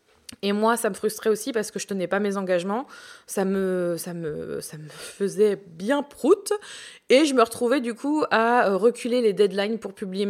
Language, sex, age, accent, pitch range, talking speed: French, female, 20-39, French, 195-240 Hz, 200 wpm